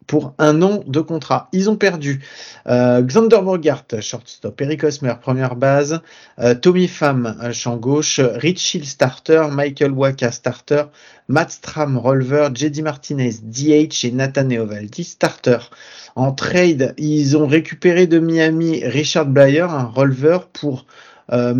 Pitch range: 125-150 Hz